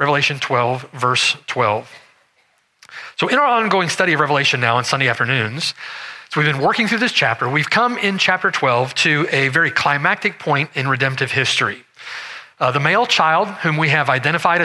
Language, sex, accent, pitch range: English, male, American, 135-200 Hz